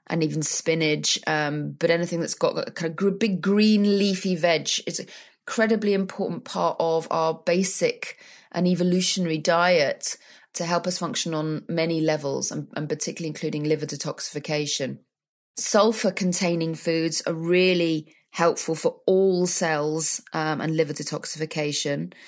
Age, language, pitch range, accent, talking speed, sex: 30-49, English, 160-185 Hz, British, 135 wpm, female